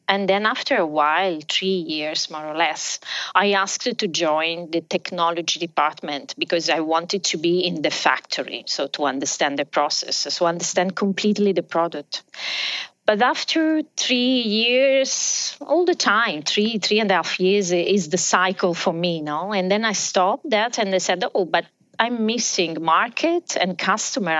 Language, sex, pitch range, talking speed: English, female, 165-210 Hz, 170 wpm